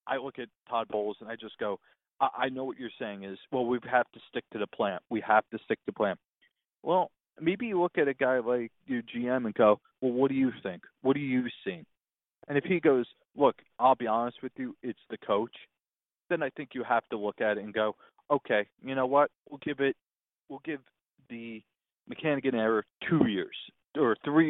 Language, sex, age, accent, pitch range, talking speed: English, male, 40-59, American, 115-165 Hz, 220 wpm